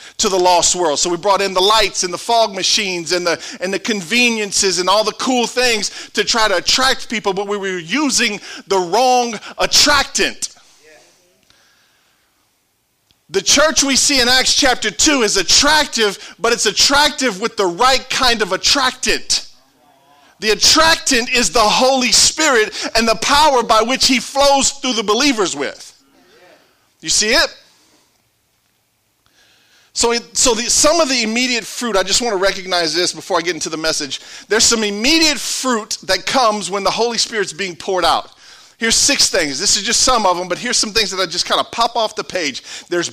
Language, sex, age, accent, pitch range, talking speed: English, male, 40-59, American, 195-265 Hz, 180 wpm